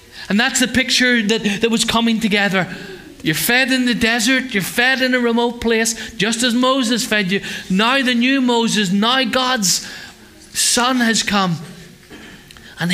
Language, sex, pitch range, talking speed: English, male, 195-230 Hz, 160 wpm